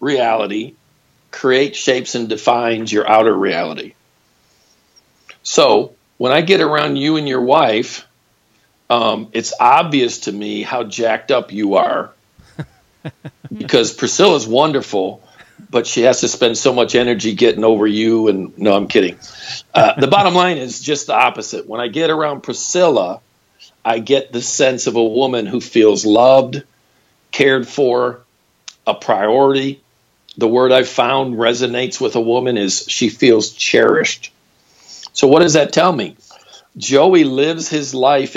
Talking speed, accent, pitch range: 145 wpm, American, 110-140 Hz